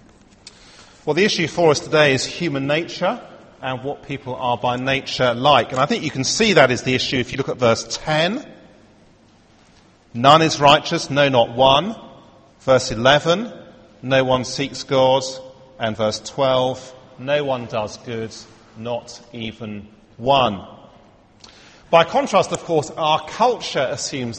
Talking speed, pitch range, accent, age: 150 wpm, 115-160 Hz, British, 40-59